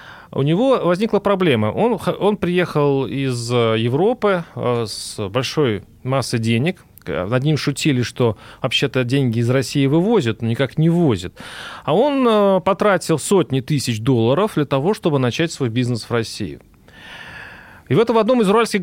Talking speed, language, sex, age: 145 wpm, Russian, male, 30-49